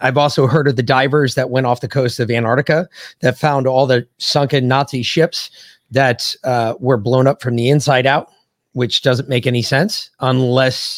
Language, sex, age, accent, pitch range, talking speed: English, male, 30-49, American, 125-160 Hz, 190 wpm